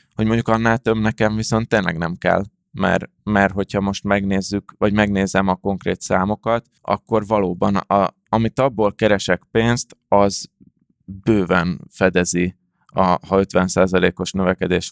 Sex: male